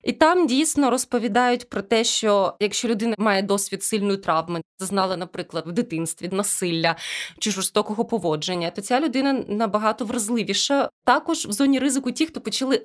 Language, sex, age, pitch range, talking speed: Ukrainian, female, 20-39, 195-265 Hz, 155 wpm